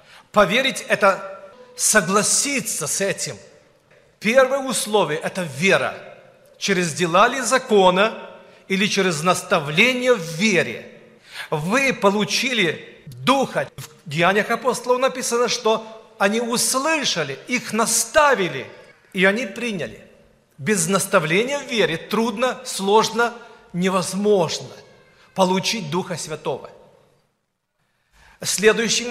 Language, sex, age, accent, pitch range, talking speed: Russian, male, 40-59, native, 190-240 Hz, 90 wpm